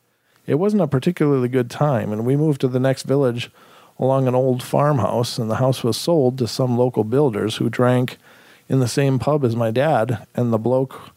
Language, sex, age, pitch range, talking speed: English, male, 50-69, 120-150 Hz, 205 wpm